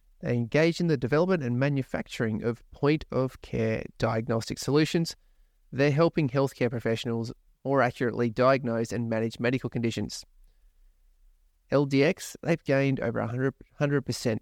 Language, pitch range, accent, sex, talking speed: English, 115-140 Hz, Australian, male, 115 wpm